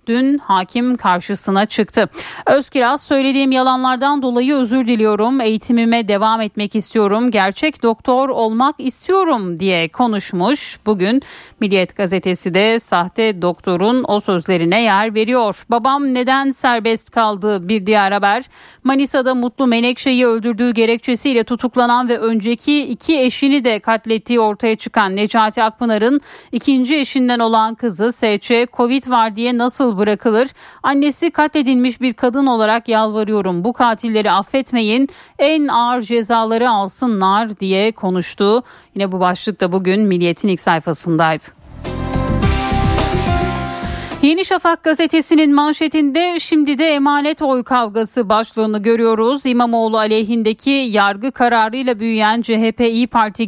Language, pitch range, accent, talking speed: Turkish, 210-255 Hz, native, 120 wpm